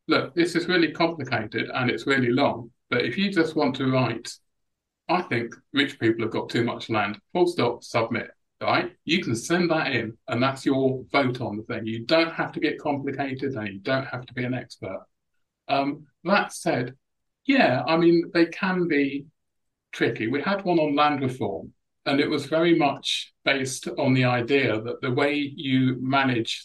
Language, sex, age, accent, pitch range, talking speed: English, male, 50-69, British, 120-150 Hz, 190 wpm